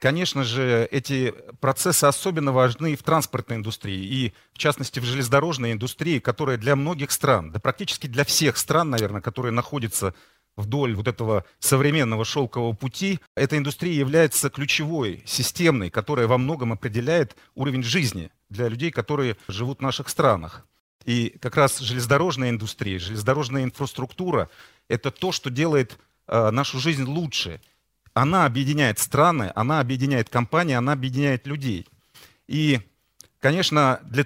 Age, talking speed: 40-59, 135 wpm